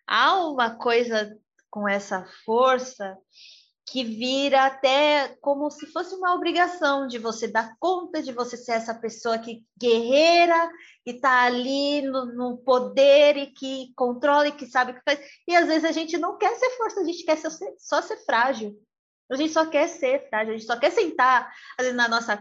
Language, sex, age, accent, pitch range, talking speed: Portuguese, female, 20-39, Brazilian, 230-295 Hz, 190 wpm